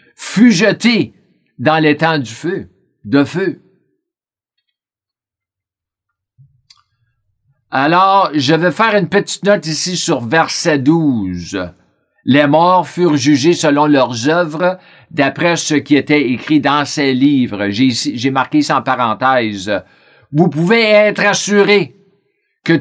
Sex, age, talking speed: male, 50-69, 120 wpm